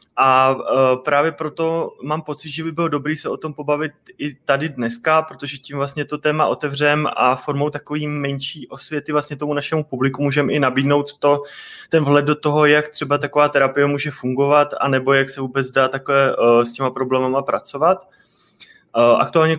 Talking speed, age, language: 180 wpm, 20-39, Czech